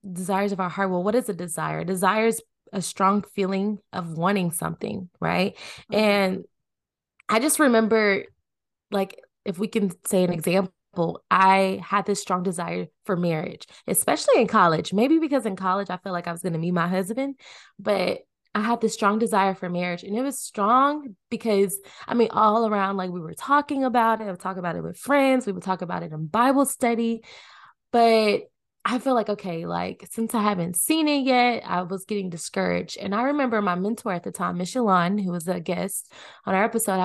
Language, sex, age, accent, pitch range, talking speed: English, female, 20-39, American, 180-230 Hz, 200 wpm